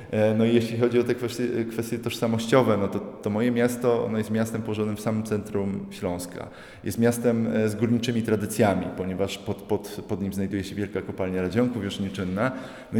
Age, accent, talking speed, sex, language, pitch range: 20-39, native, 180 wpm, male, Polish, 100-120 Hz